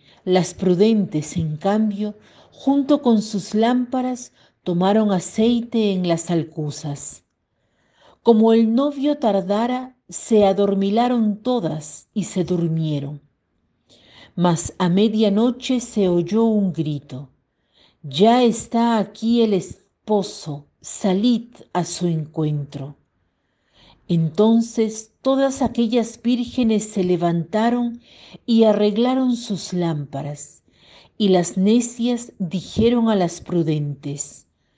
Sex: female